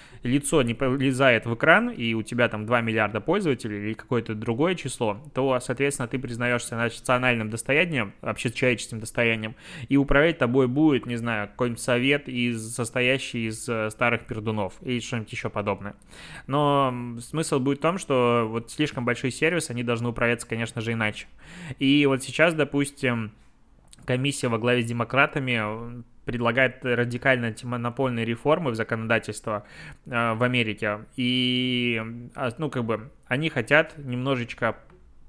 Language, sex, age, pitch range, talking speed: Russian, male, 20-39, 115-135 Hz, 140 wpm